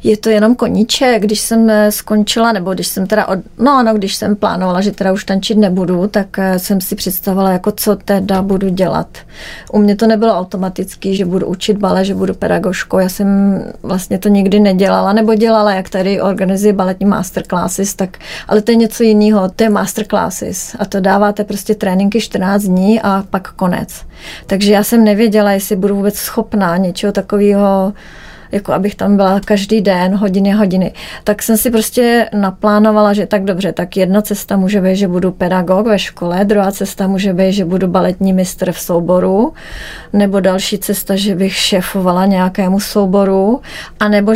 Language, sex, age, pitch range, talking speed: Czech, female, 30-49, 190-215 Hz, 175 wpm